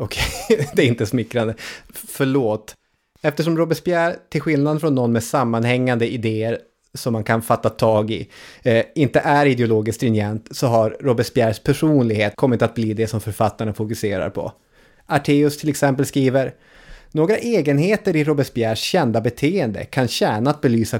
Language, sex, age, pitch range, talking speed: English, male, 30-49, 115-150 Hz, 145 wpm